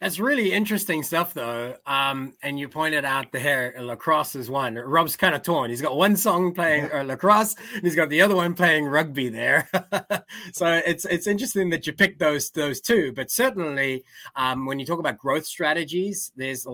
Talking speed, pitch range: 200 wpm, 125-175 Hz